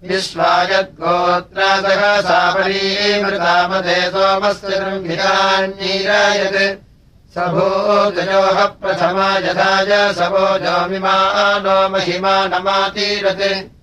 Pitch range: 180-195 Hz